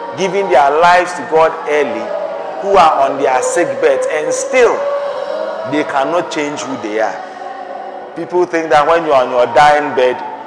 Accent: Nigerian